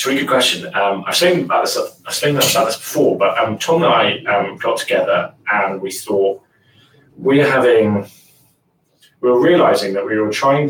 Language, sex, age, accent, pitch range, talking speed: English, male, 20-39, British, 100-145 Hz, 190 wpm